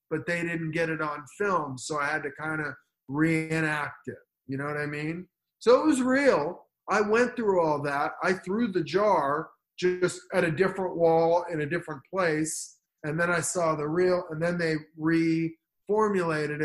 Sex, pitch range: male, 140-180 Hz